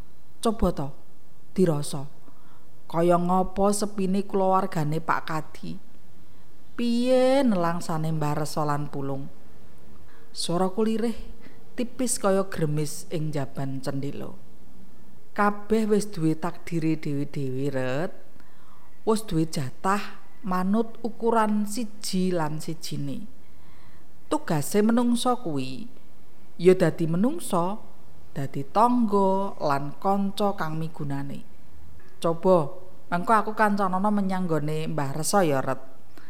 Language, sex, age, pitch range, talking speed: Indonesian, female, 40-59, 145-195 Hz, 90 wpm